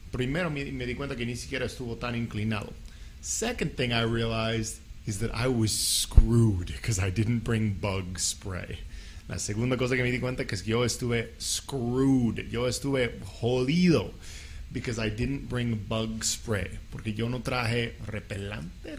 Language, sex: English, male